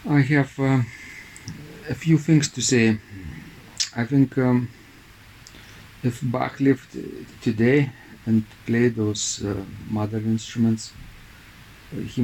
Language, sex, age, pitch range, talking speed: English, male, 50-69, 105-120 Hz, 110 wpm